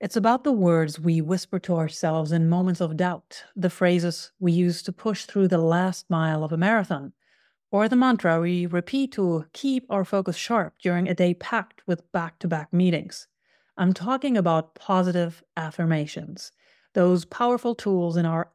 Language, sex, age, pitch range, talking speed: English, female, 40-59, 170-210 Hz, 170 wpm